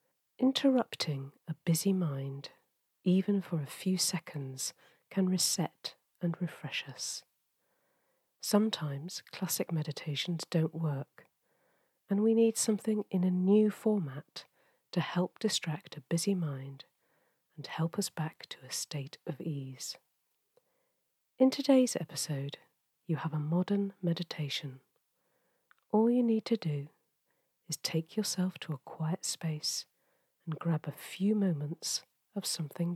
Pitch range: 155-205 Hz